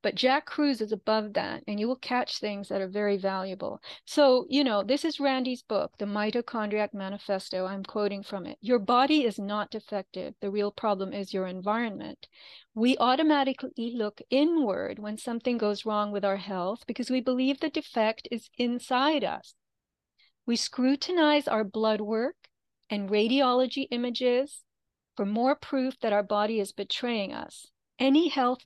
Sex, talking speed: female, 165 wpm